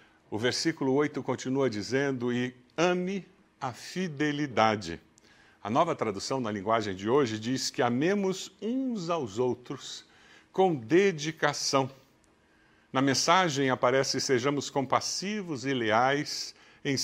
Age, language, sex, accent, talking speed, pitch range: 60-79, Portuguese, male, Brazilian, 115 wpm, 110-150 Hz